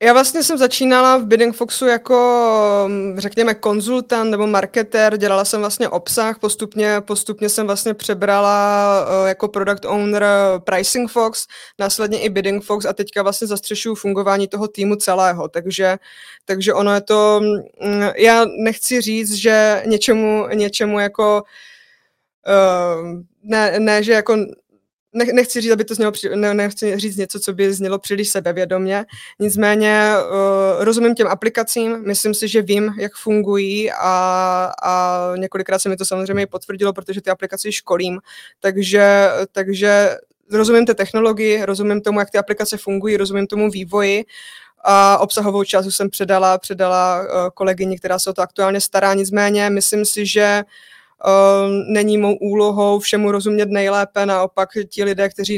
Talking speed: 140 wpm